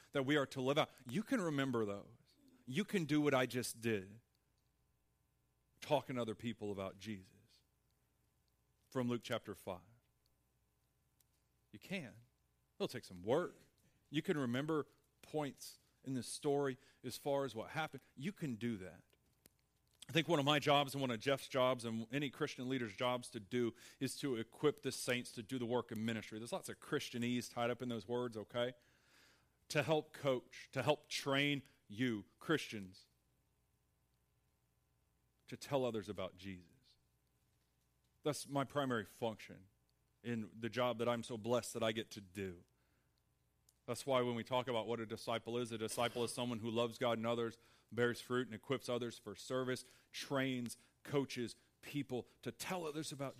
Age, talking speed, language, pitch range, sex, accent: 40-59, 170 wpm, English, 110-140 Hz, male, American